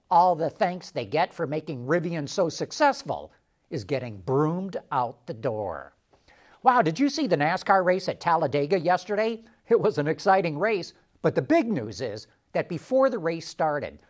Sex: male